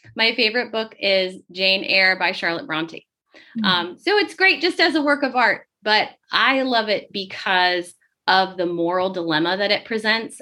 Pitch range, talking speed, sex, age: 180-225 Hz, 180 wpm, female, 20-39